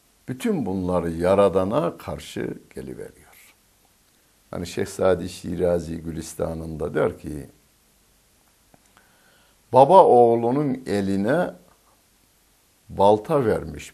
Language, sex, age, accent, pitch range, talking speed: Turkish, male, 60-79, native, 80-110 Hz, 75 wpm